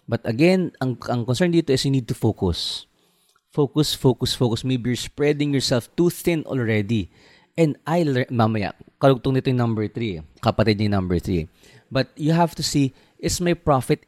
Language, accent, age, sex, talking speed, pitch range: Filipino, native, 20-39, male, 170 wpm, 105-145 Hz